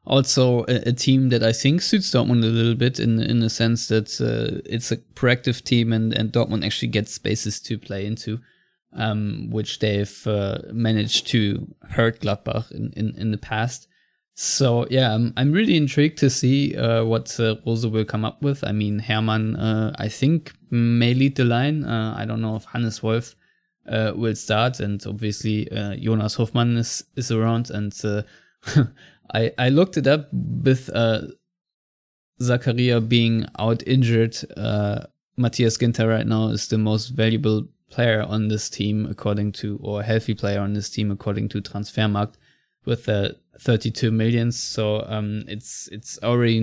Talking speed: 170 wpm